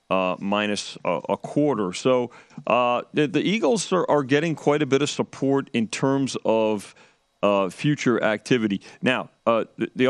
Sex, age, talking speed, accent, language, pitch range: male, 40-59, 160 wpm, American, English, 115-140 Hz